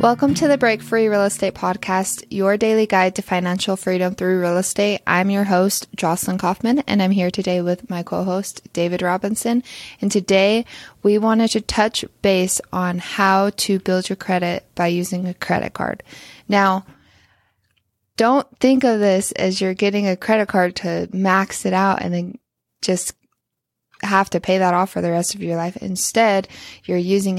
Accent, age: American, 20-39